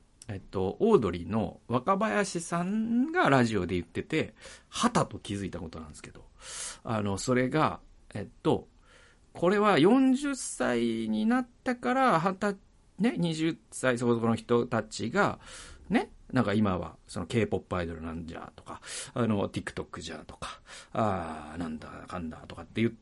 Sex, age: male, 40-59